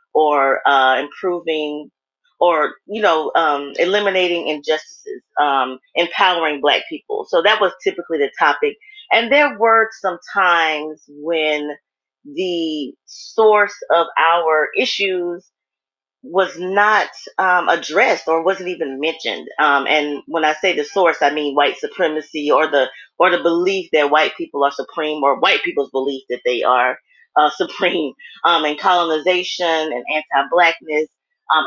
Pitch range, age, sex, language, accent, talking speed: 150-210 Hz, 30-49, female, English, American, 140 wpm